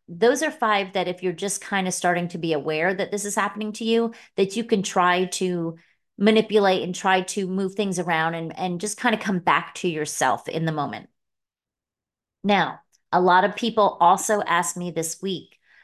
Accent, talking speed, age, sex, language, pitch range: American, 200 wpm, 30-49, female, English, 165-210 Hz